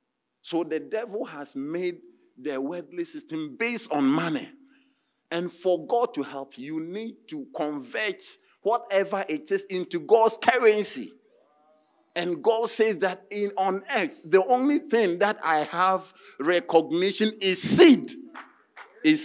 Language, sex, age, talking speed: English, male, 50-69, 135 wpm